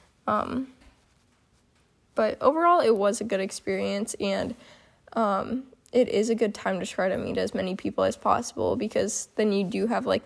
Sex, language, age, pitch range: female, English, 10-29, 205-255 Hz